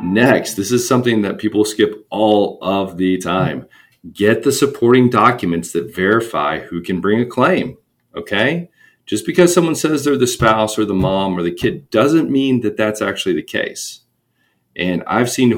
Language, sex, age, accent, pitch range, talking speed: English, male, 40-59, American, 90-130 Hz, 175 wpm